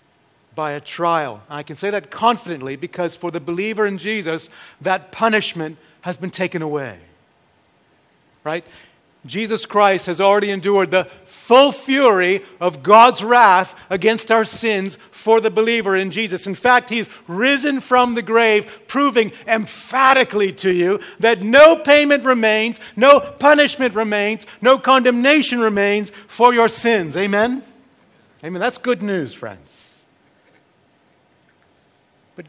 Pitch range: 180-235 Hz